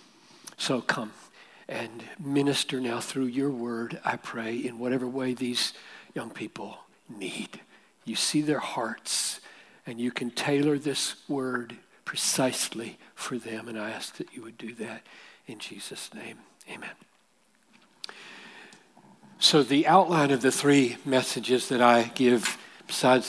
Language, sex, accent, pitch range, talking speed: English, male, American, 125-150 Hz, 135 wpm